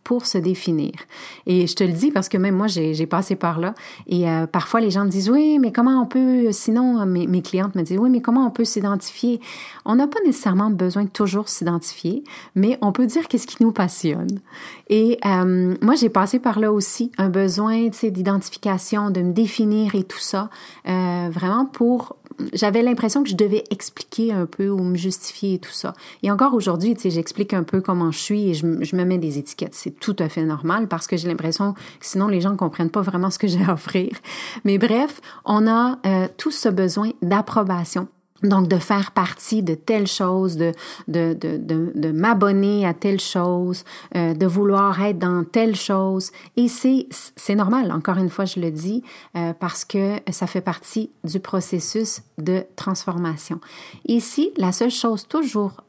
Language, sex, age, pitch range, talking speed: French, female, 30-49, 180-225 Hz, 200 wpm